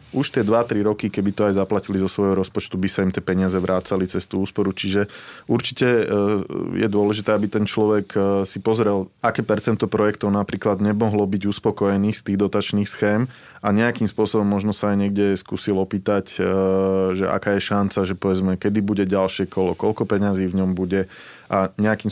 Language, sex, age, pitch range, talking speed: Slovak, male, 20-39, 95-105 Hz, 180 wpm